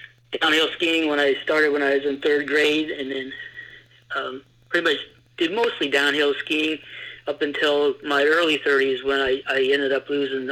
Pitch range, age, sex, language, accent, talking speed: 140-165 Hz, 40-59, male, English, American, 175 wpm